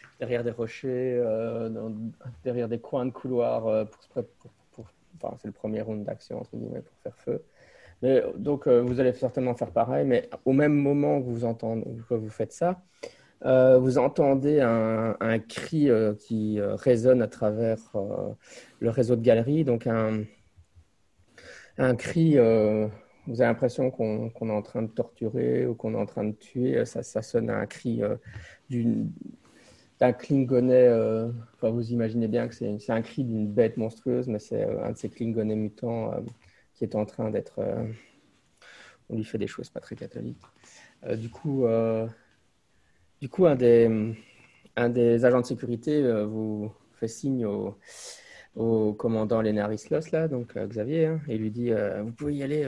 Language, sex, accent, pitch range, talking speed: English, male, French, 110-130 Hz, 185 wpm